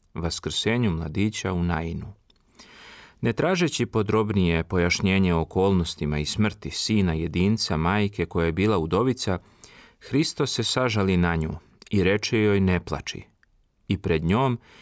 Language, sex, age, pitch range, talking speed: Croatian, male, 40-59, 85-110 Hz, 125 wpm